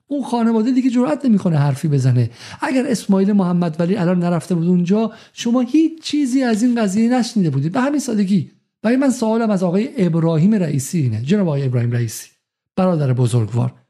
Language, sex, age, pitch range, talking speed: Persian, male, 50-69, 135-190 Hz, 175 wpm